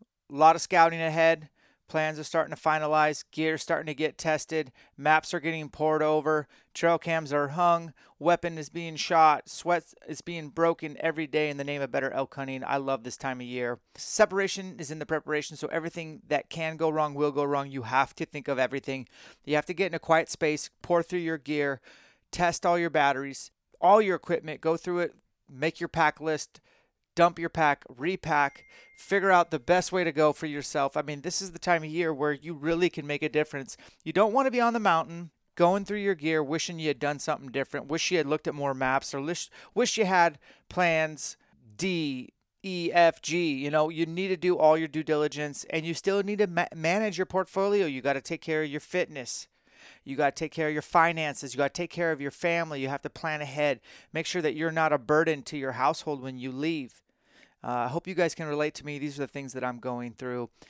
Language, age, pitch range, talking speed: English, 30-49, 145-170 Hz, 230 wpm